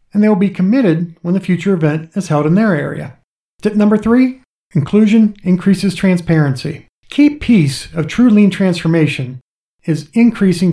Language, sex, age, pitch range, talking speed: English, male, 40-59, 155-200 Hz, 150 wpm